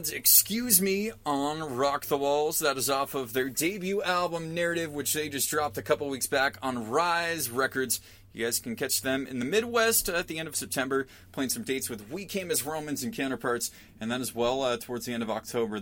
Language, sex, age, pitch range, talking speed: English, male, 20-39, 110-140 Hz, 220 wpm